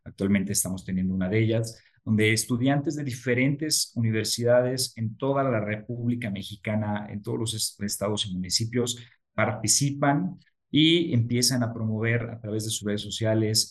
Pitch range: 100-125 Hz